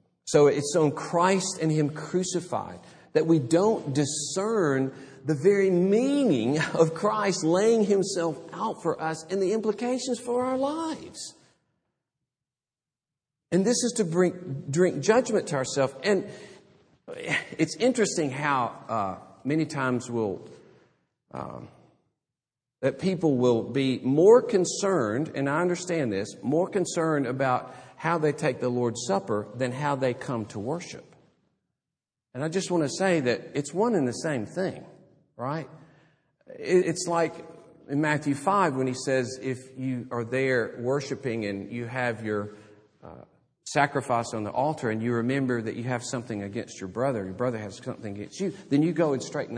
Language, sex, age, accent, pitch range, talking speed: English, male, 50-69, American, 130-180 Hz, 155 wpm